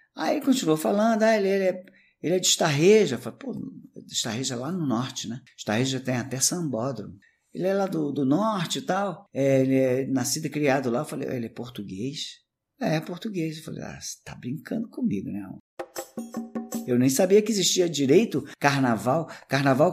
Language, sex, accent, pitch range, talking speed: Portuguese, male, Brazilian, 110-160 Hz, 195 wpm